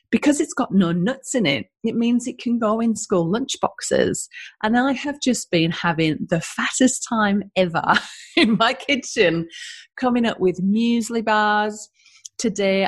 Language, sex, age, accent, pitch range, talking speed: English, female, 40-59, British, 170-240 Hz, 165 wpm